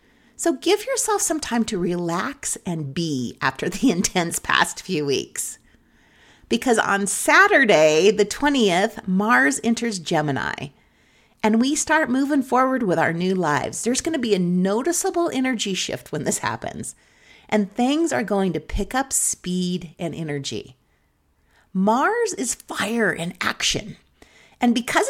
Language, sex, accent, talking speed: English, female, American, 145 wpm